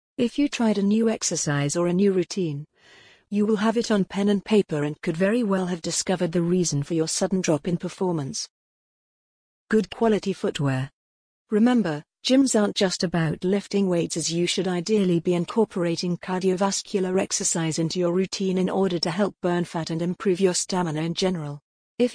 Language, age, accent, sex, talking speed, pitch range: English, 50-69, British, female, 180 wpm, 170-205 Hz